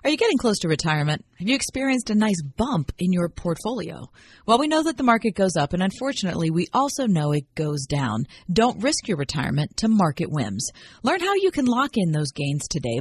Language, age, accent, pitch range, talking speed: English, 40-59, American, 155-230 Hz, 215 wpm